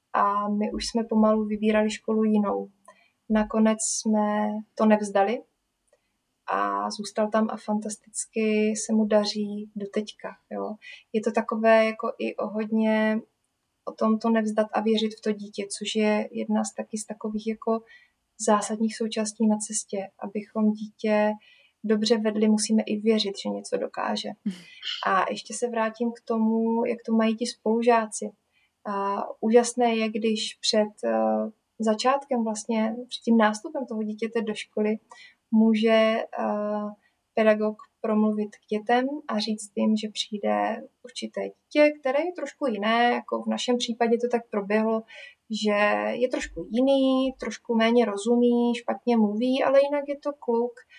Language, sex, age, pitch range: Czech, female, 20-39, 215-240 Hz